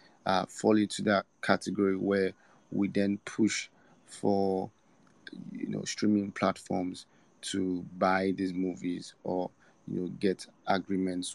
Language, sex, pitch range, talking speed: English, male, 95-105 Hz, 120 wpm